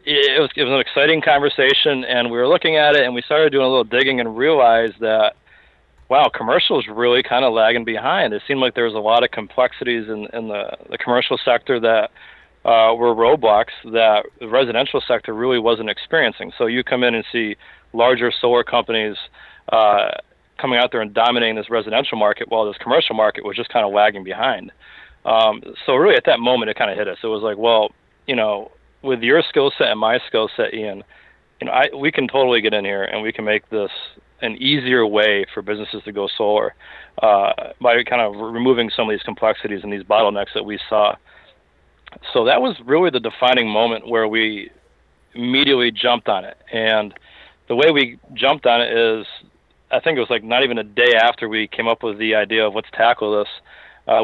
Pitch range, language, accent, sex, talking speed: 105-120 Hz, English, American, male, 210 wpm